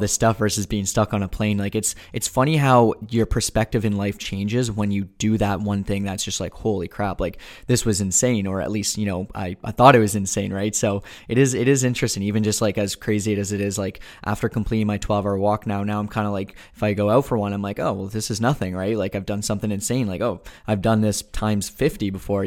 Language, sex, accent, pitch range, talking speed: English, male, American, 100-110 Hz, 260 wpm